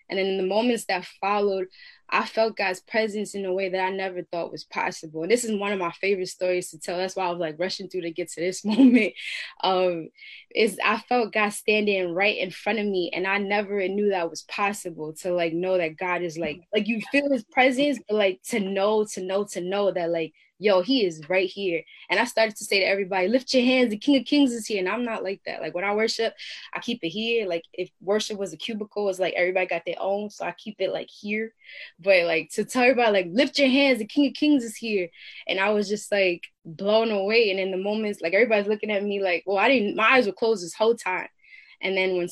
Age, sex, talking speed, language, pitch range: 10-29, female, 255 wpm, English, 180-220 Hz